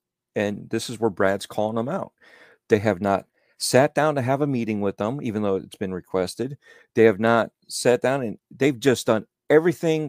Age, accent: 40-59, American